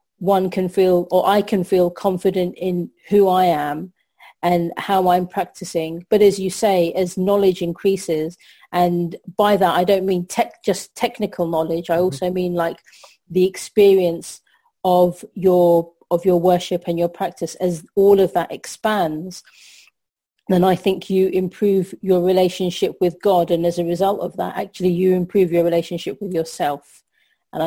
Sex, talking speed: female, 160 wpm